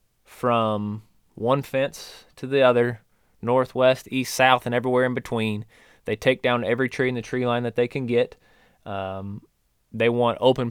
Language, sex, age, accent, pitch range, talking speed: English, male, 20-39, American, 110-130 Hz, 170 wpm